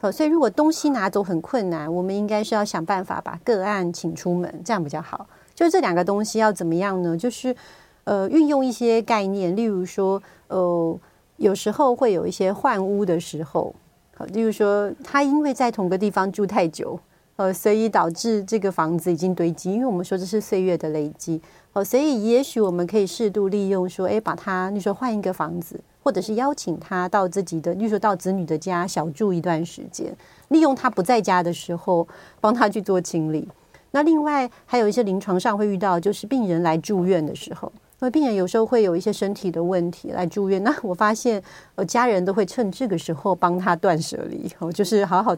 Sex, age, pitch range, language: female, 40-59, 175-220 Hz, Chinese